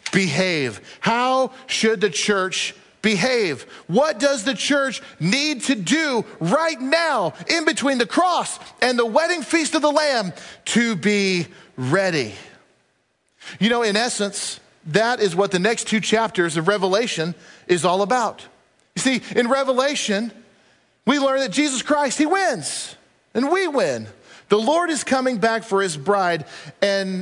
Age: 40-59